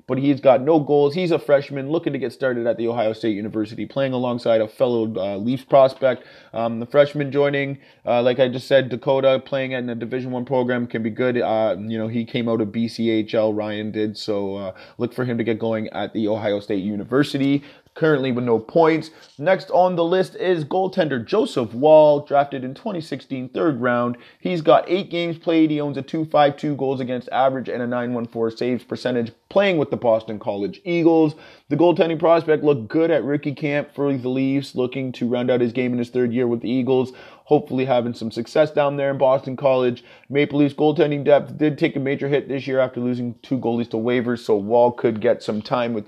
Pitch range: 115-145 Hz